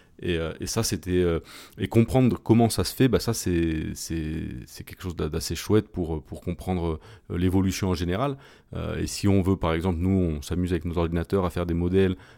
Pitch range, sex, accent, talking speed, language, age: 85-105 Hz, male, French, 205 wpm, French, 30-49